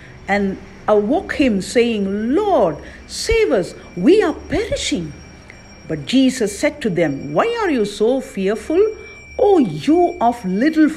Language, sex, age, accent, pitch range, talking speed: English, female, 50-69, Indian, 185-260 Hz, 130 wpm